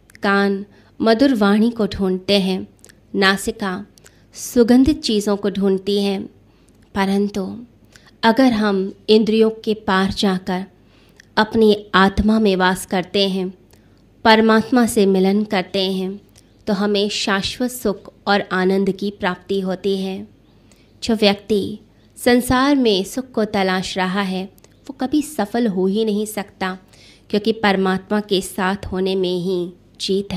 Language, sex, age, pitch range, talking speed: Hindi, female, 20-39, 190-215 Hz, 125 wpm